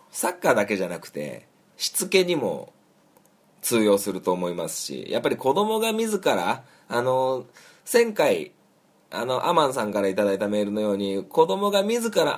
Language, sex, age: Japanese, male, 20-39